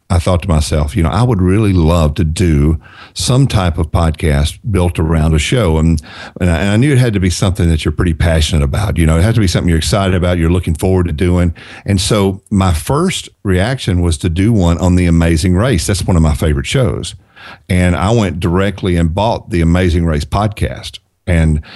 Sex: male